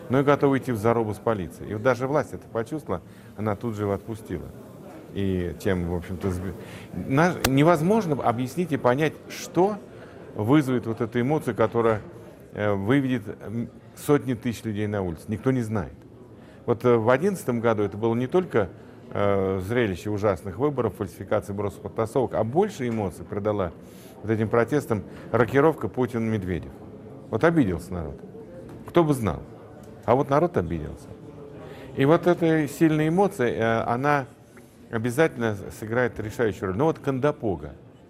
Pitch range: 105-130 Hz